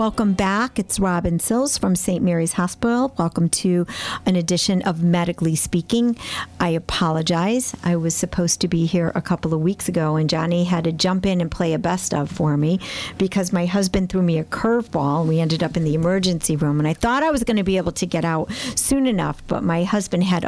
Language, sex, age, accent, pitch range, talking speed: English, female, 50-69, American, 165-210 Hz, 215 wpm